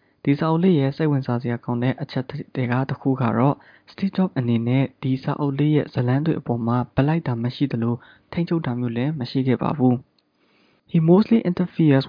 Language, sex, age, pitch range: English, male, 20-39, 125-155 Hz